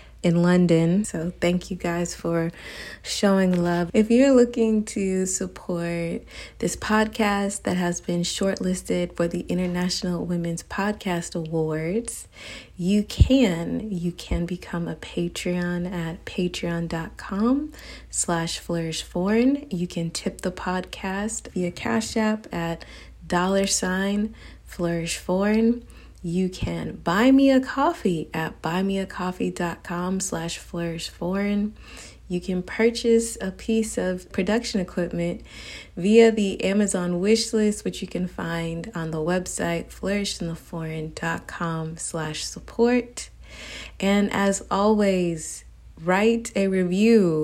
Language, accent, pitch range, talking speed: English, American, 170-210 Hz, 110 wpm